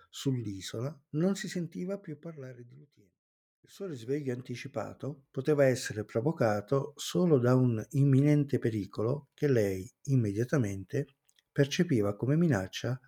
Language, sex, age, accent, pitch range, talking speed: Italian, male, 50-69, native, 110-145 Hz, 120 wpm